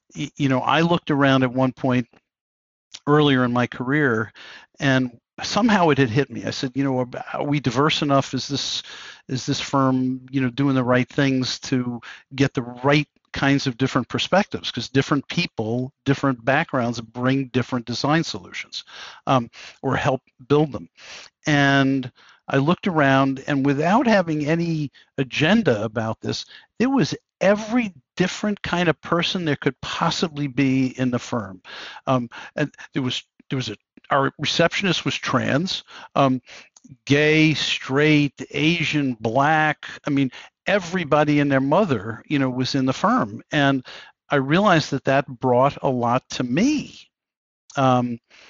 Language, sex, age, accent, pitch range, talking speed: English, male, 50-69, American, 130-150 Hz, 155 wpm